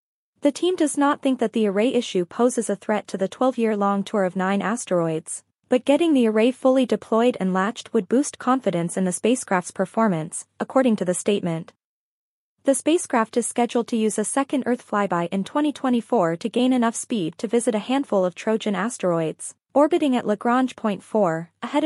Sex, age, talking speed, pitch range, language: female, 20-39, 185 wpm, 190-250 Hz, English